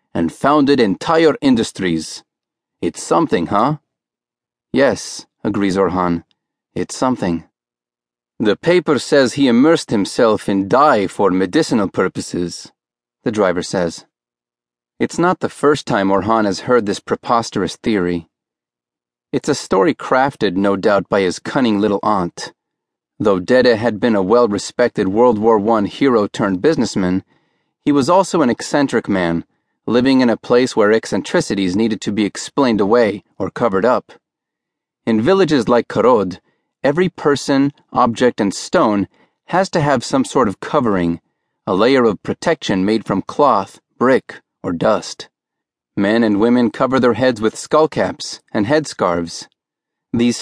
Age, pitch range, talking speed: 30-49, 85-130 Hz, 135 wpm